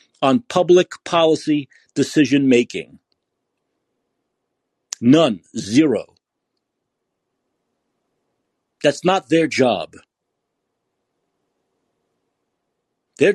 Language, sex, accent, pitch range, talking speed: English, male, American, 160-240 Hz, 55 wpm